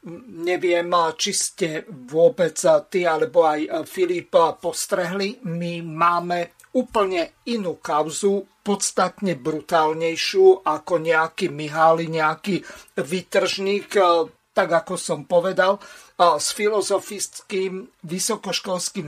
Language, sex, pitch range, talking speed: Slovak, male, 170-210 Hz, 90 wpm